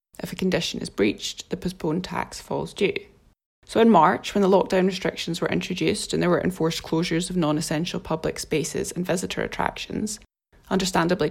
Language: English